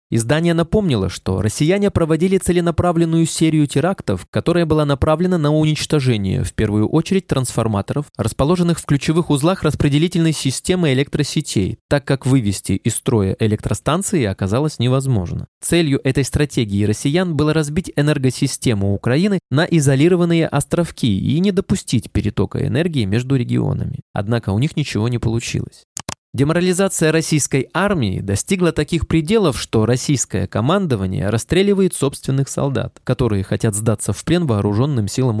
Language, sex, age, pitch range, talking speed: Russian, male, 20-39, 115-165 Hz, 125 wpm